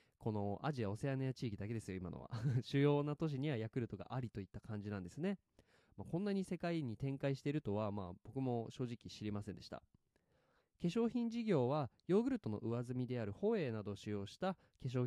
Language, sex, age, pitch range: Japanese, male, 20-39, 110-190 Hz